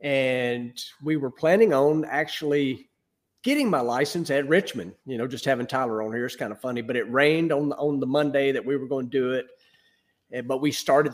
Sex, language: male, English